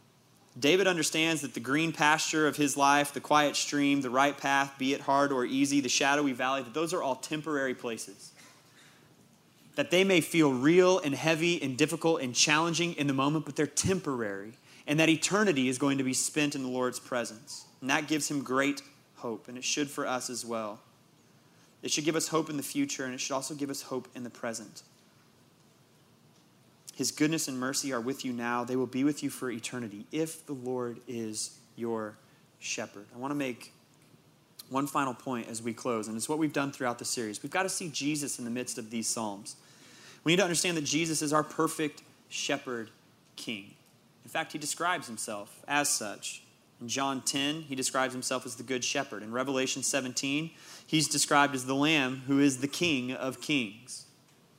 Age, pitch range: 30-49, 125-155 Hz